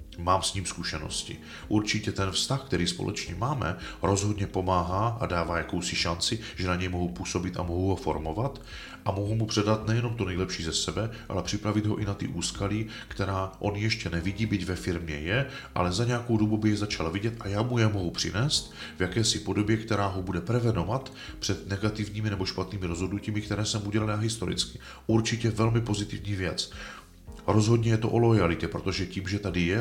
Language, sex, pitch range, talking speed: Czech, male, 90-110 Hz, 185 wpm